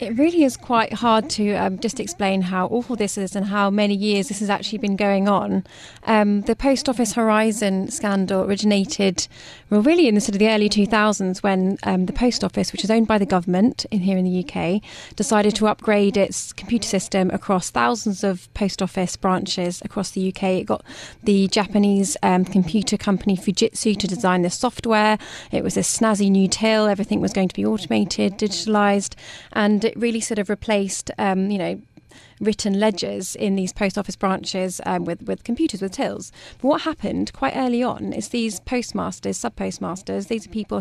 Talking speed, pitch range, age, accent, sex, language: 190 wpm, 190-220 Hz, 30-49, British, female, English